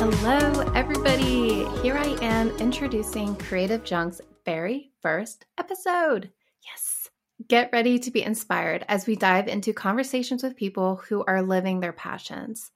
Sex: female